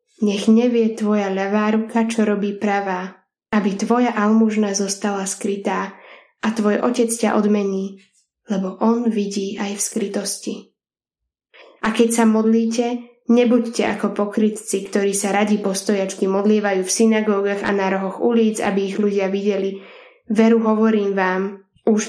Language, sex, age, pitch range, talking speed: Slovak, female, 10-29, 200-225 Hz, 135 wpm